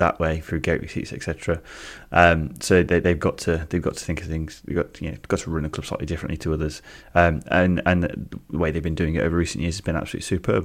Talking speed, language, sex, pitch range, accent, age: 270 wpm, English, male, 80-90 Hz, British, 20-39